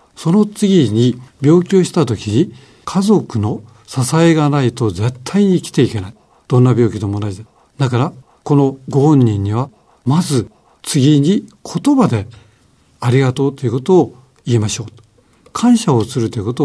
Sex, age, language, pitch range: male, 60-79, Japanese, 120-175 Hz